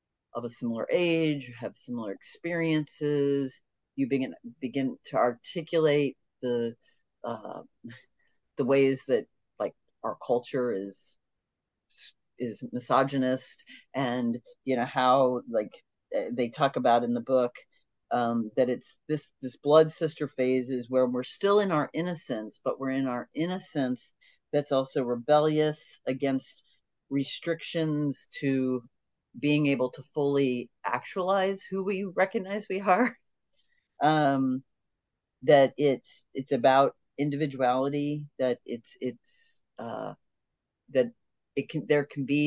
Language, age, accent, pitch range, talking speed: English, 40-59, American, 125-150 Hz, 120 wpm